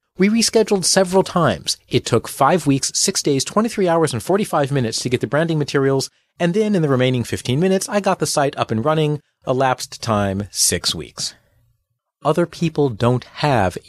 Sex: male